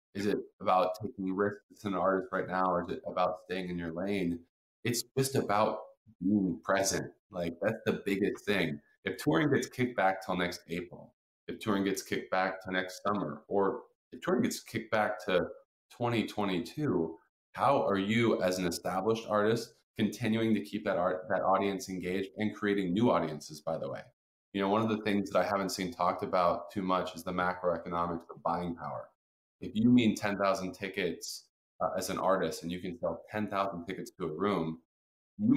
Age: 20-39